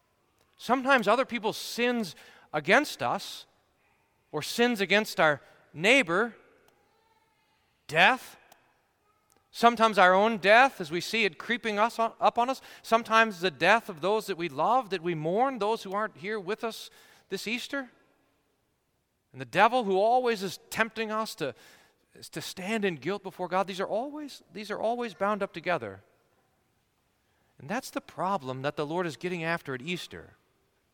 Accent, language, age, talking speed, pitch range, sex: American, English, 40-59, 155 wpm, 180-225 Hz, male